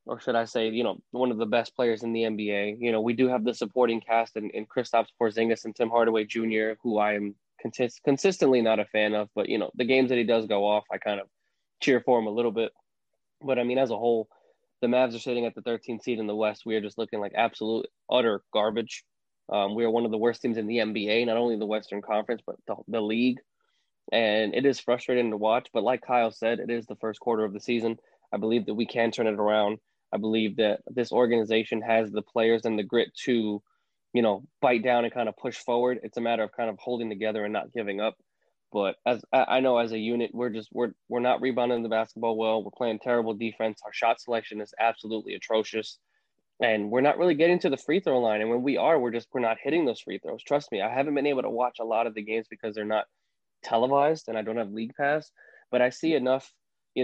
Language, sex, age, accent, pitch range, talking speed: English, male, 20-39, American, 110-125 Hz, 250 wpm